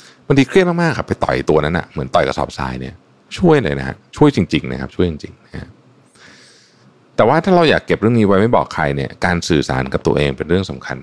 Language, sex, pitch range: Thai, male, 70-100 Hz